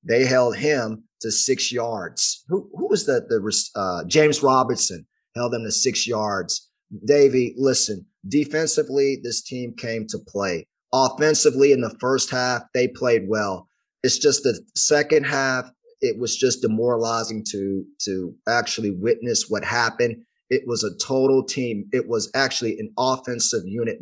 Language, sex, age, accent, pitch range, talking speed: English, male, 30-49, American, 120-140 Hz, 150 wpm